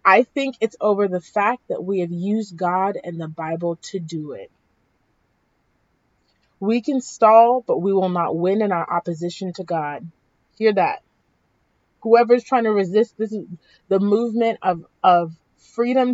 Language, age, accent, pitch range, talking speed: English, 30-49, American, 170-210 Hz, 155 wpm